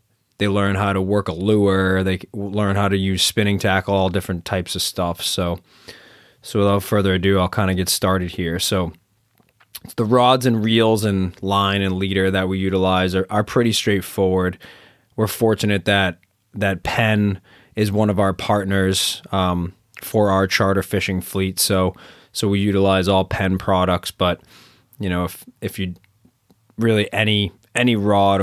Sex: male